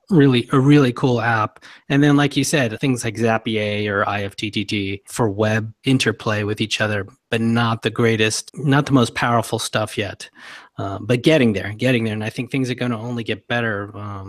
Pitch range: 110-130 Hz